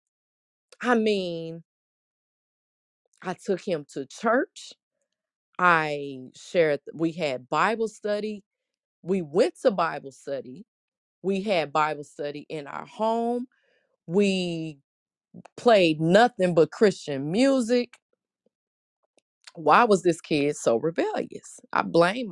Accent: American